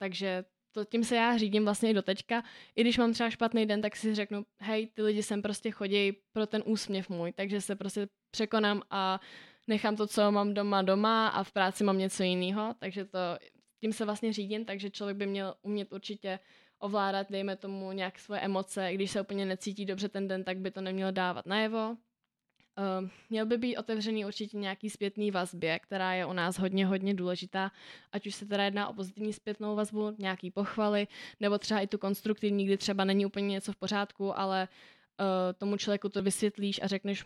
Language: Czech